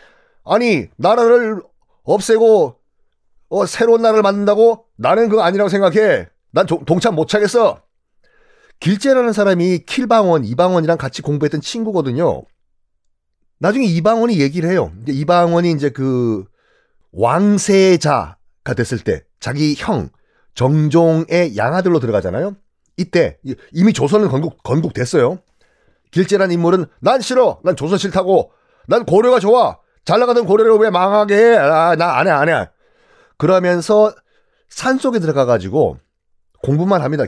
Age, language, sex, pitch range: 40-59, Korean, male, 150-215 Hz